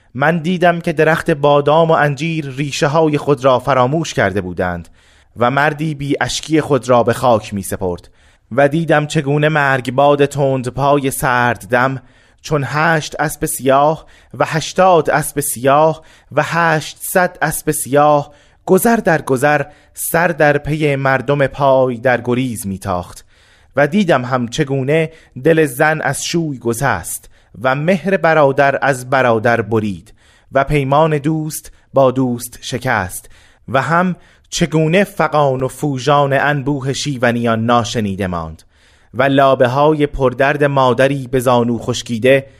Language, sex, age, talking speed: Persian, male, 30-49, 135 wpm